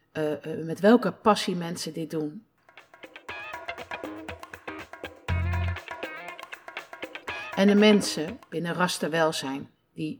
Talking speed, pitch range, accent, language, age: 75 wpm, 160-210 Hz, Dutch, Dutch, 60-79